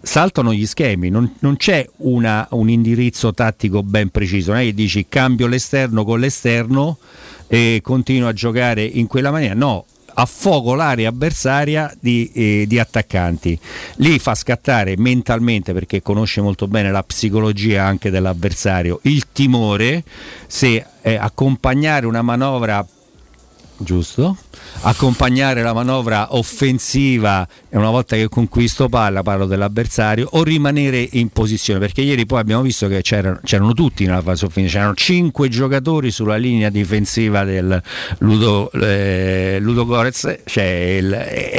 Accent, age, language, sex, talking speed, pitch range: native, 50-69, Italian, male, 140 wpm, 100-130 Hz